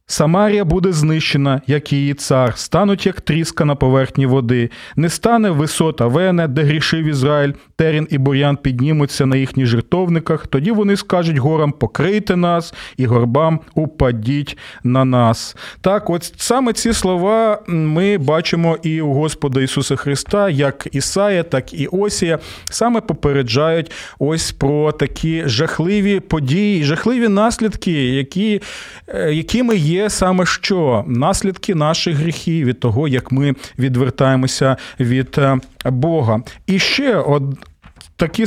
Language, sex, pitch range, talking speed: Ukrainian, male, 135-185 Hz, 130 wpm